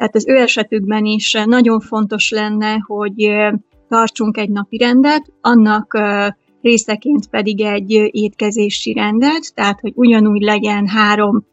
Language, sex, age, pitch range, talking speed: Hungarian, female, 30-49, 210-230 Hz, 125 wpm